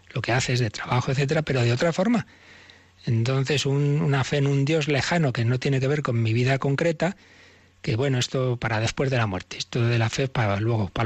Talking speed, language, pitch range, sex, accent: 235 wpm, Spanish, 115-155 Hz, male, Spanish